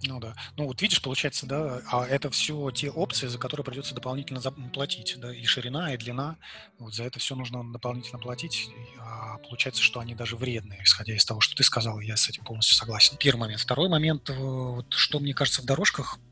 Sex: male